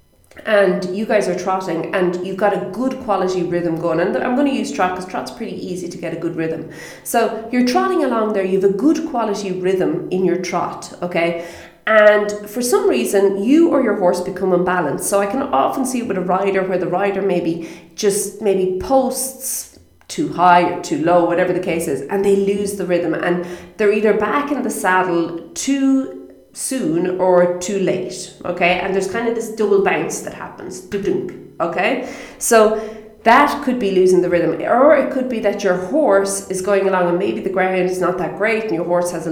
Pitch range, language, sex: 175-215 Hz, English, female